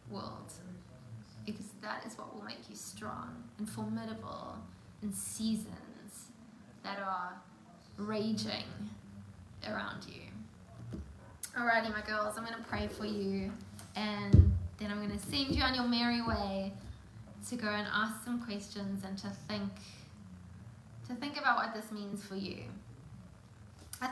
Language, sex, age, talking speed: English, female, 20-39, 140 wpm